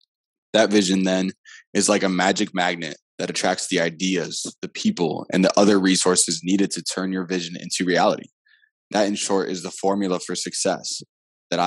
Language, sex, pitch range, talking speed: English, male, 90-105 Hz, 175 wpm